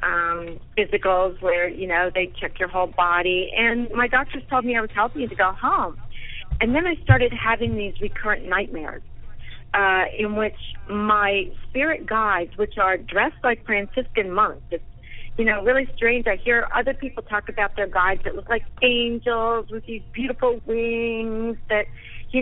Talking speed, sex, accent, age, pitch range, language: 175 wpm, female, American, 40-59, 190-245 Hz, English